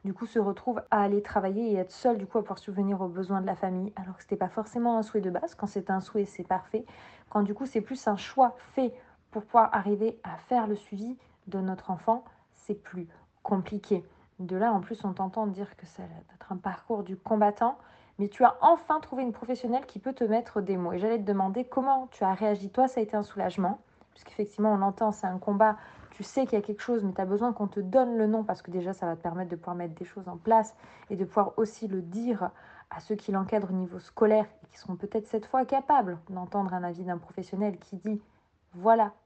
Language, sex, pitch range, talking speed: French, female, 190-225 Hz, 250 wpm